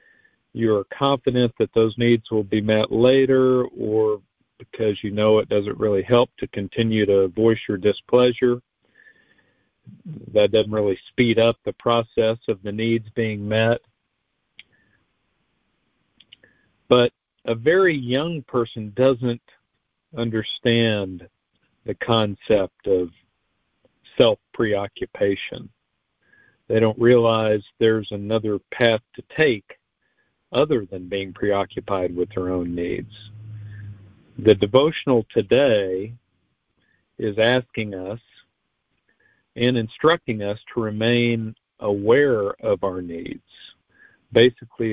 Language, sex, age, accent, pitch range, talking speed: English, male, 50-69, American, 105-120 Hz, 105 wpm